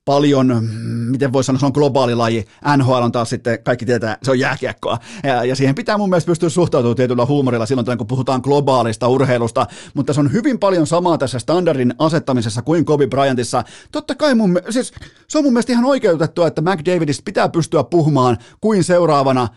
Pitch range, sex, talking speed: 130-175 Hz, male, 185 wpm